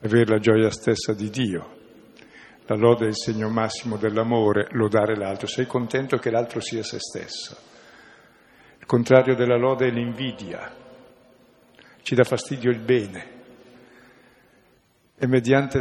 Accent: native